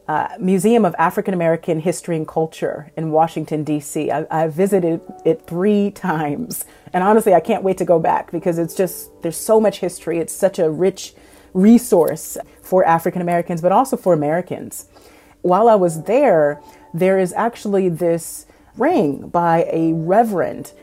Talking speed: 155 wpm